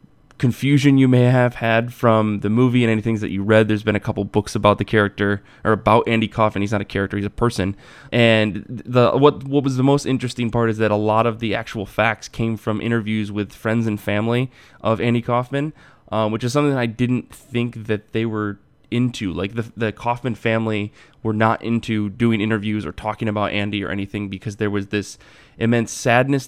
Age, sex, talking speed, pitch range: 20-39, male, 210 wpm, 105-125 Hz